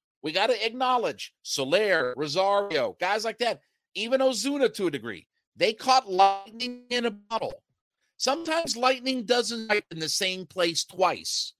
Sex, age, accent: male, 50-69, American